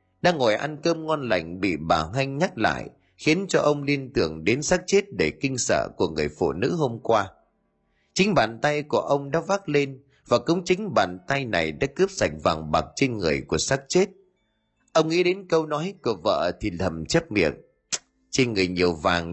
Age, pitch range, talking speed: 30-49, 95-145 Hz, 210 wpm